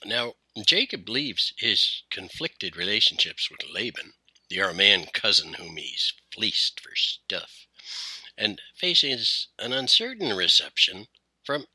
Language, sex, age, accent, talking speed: English, male, 60-79, American, 110 wpm